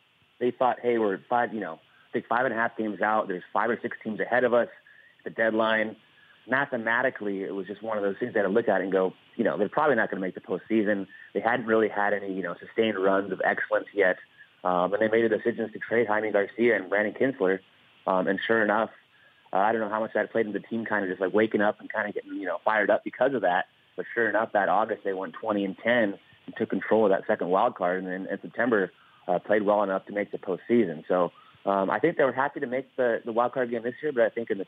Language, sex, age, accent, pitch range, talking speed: English, male, 30-49, American, 95-115 Hz, 270 wpm